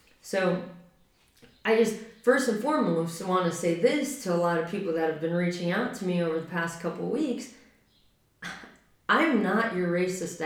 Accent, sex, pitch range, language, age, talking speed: American, female, 180-235 Hz, English, 20-39, 185 wpm